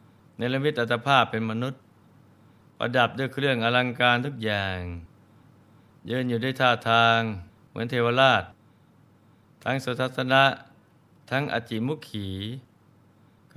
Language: Thai